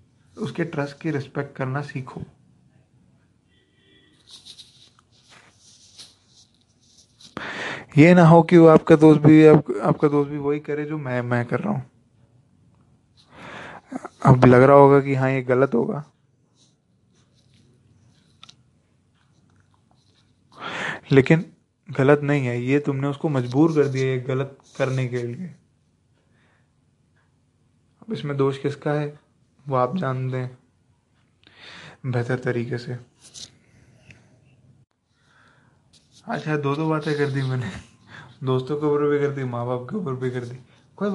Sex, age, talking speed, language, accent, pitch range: male, 20-39, 125 wpm, English, Indian, 125-150 Hz